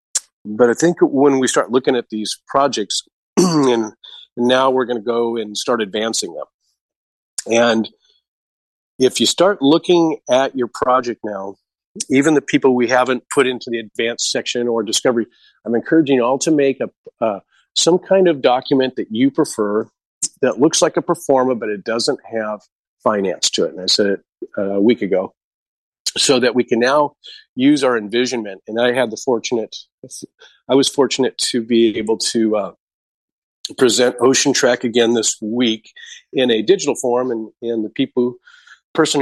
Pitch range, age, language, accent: 115-135 Hz, 40-59, English, American